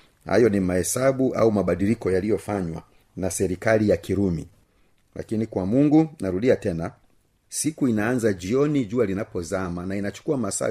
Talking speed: 130 wpm